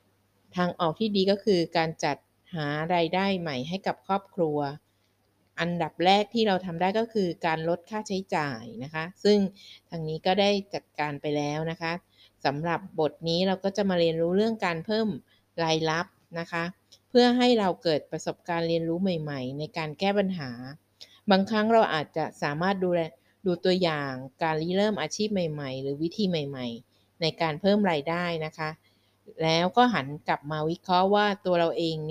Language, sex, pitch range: Thai, female, 150-190 Hz